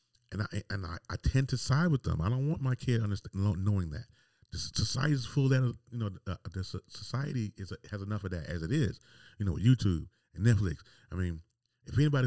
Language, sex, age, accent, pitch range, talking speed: English, male, 40-59, American, 95-120 Hz, 225 wpm